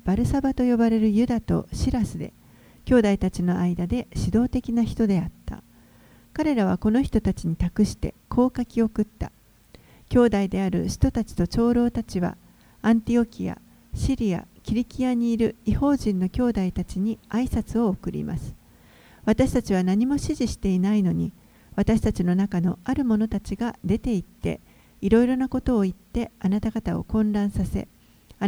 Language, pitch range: Japanese, 190-240 Hz